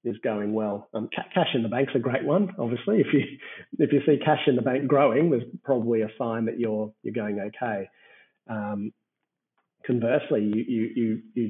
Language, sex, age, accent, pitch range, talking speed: English, male, 30-49, Australian, 110-135 Hz, 195 wpm